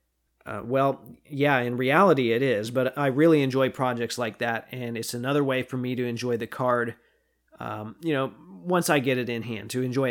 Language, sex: English, male